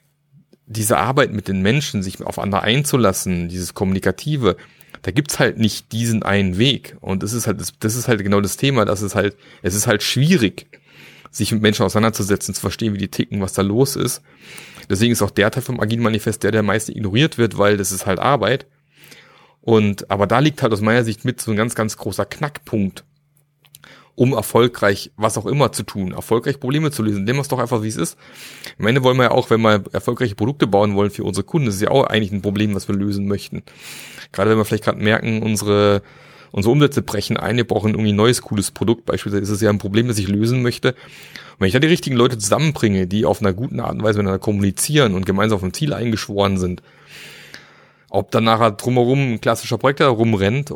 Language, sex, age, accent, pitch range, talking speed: German, male, 30-49, German, 100-125 Hz, 220 wpm